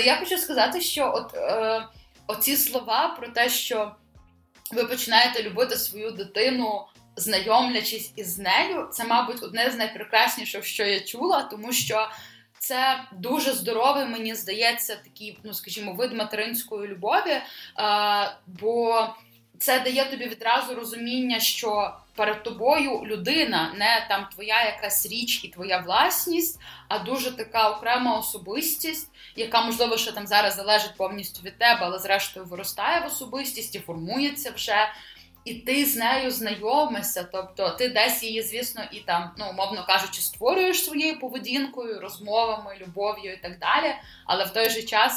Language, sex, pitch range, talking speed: Ukrainian, female, 200-245 Hz, 145 wpm